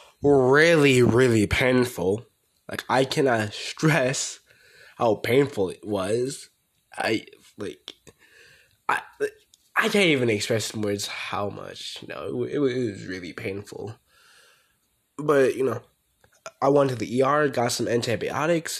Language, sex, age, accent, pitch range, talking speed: English, male, 20-39, American, 110-150 Hz, 135 wpm